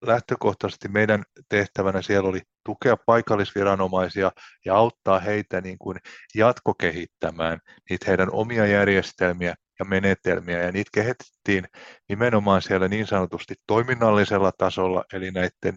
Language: Finnish